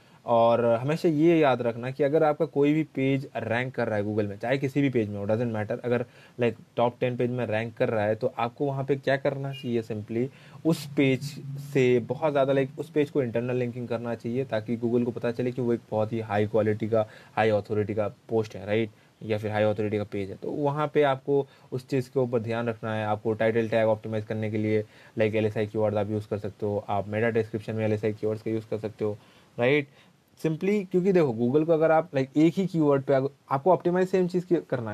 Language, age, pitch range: Hindi, 20-39, 115-145 Hz